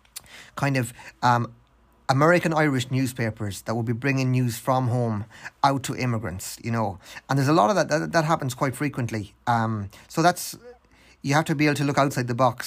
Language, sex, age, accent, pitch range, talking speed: English, male, 30-49, Irish, 115-140 Hz, 195 wpm